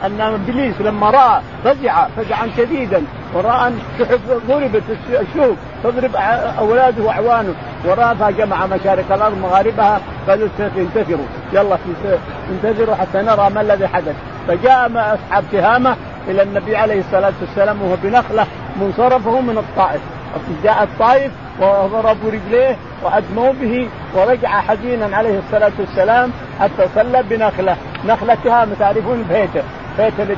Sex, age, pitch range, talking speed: male, 50-69, 185-235 Hz, 115 wpm